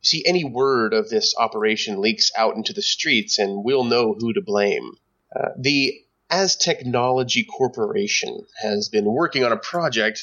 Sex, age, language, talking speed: male, 30-49, English, 170 wpm